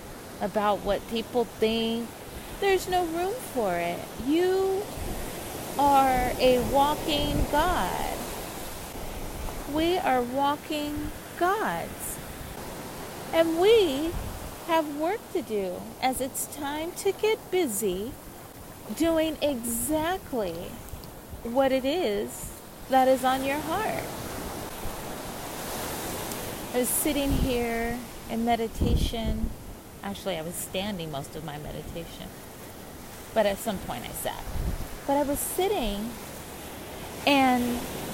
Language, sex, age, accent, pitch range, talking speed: English, female, 30-49, American, 220-295 Hz, 100 wpm